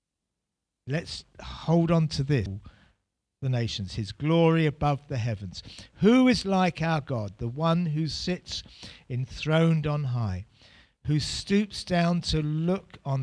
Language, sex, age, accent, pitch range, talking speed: English, male, 50-69, British, 105-160 Hz, 135 wpm